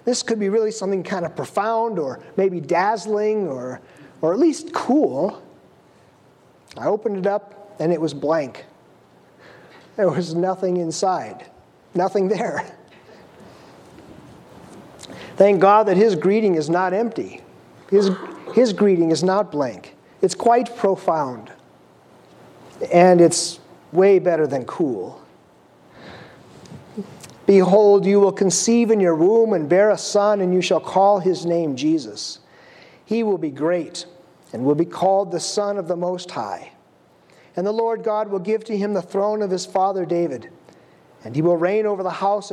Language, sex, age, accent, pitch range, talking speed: English, male, 50-69, American, 170-205 Hz, 150 wpm